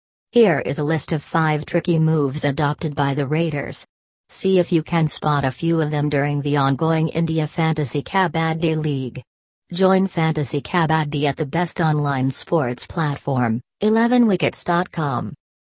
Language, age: English, 40-59